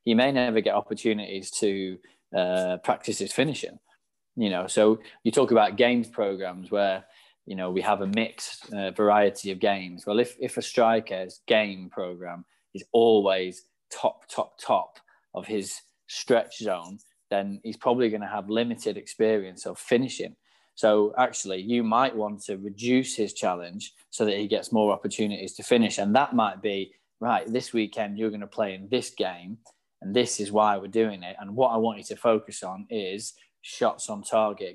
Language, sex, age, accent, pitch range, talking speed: English, male, 20-39, British, 100-115 Hz, 180 wpm